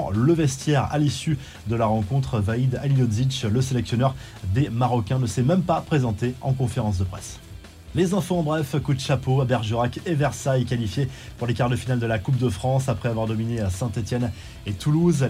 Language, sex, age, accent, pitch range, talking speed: French, male, 20-39, French, 115-140 Hz, 205 wpm